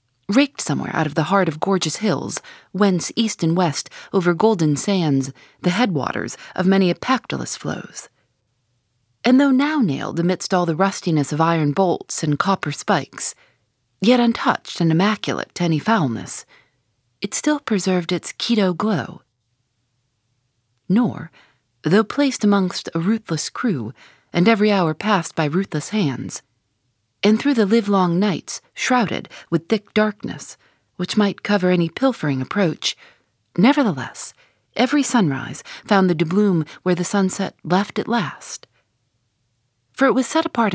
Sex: female